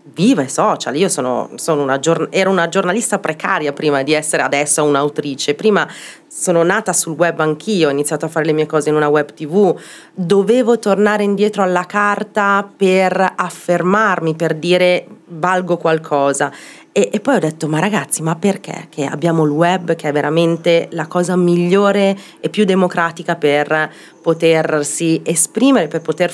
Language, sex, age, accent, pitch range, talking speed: Italian, female, 30-49, native, 150-185 Hz, 155 wpm